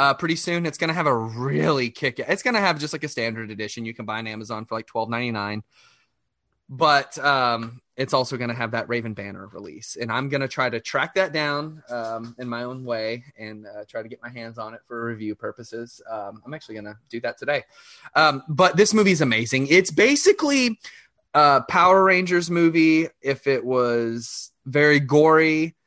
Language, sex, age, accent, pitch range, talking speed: English, male, 20-39, American, 115-145 Hz, 210 wpm